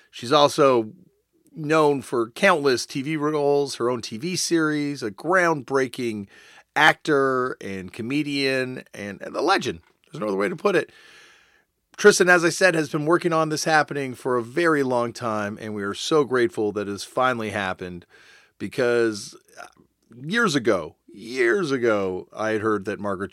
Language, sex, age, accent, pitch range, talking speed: English, male, 40-59, American, 105-150 Hz, 160 wpm